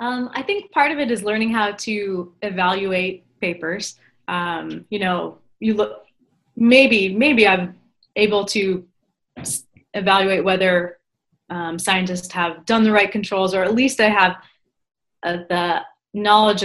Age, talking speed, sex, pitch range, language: 20-39, 145 wpm, female, 180-210 Hz, English